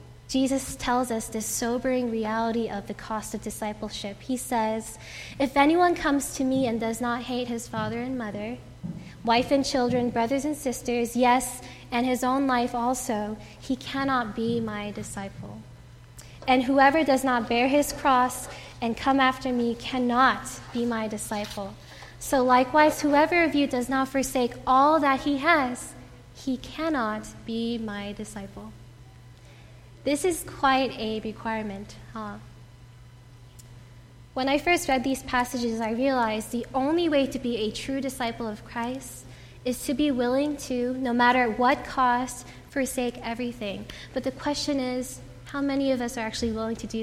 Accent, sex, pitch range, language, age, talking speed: American, female, 210-265 Hz, English, 10-29, 155 wpm